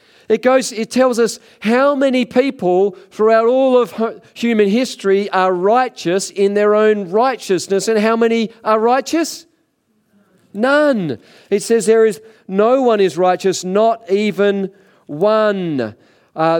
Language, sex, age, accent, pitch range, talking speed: English, male, 40-59, Australian, 145-205 Hz, 135 wpm